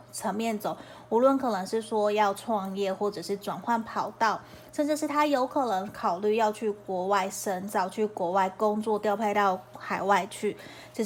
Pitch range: 195-230 Hz